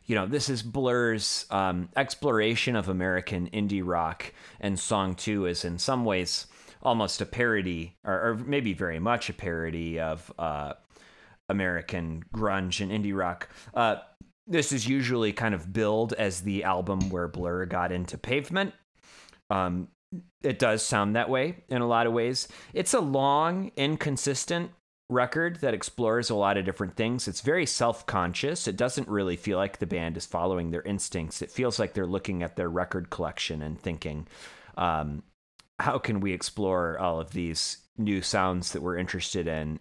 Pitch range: 85-115 Hz